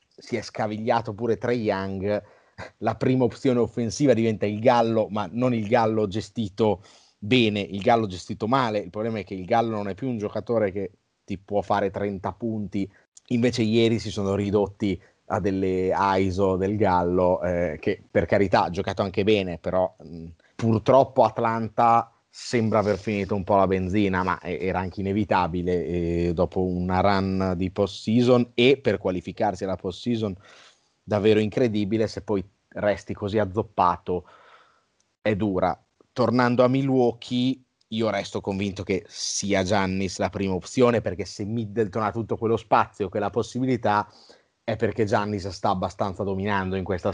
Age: 30-49